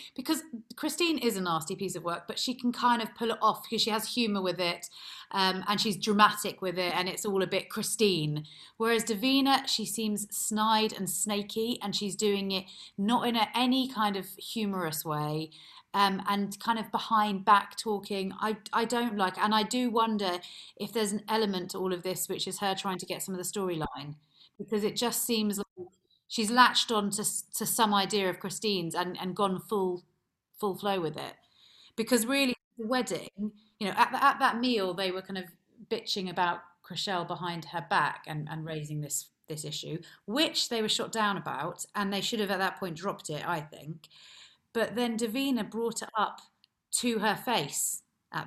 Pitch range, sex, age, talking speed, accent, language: 185-225 Hz, female, 30-49, 200 wpm, British, English